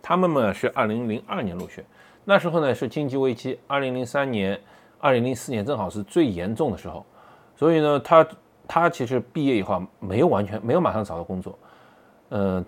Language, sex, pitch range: Chinese, male, 95-125 Hz